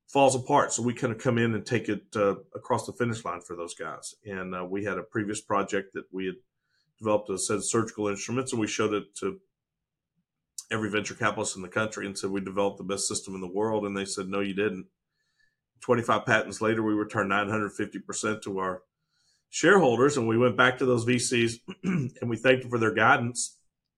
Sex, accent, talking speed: male, American, 215 wpm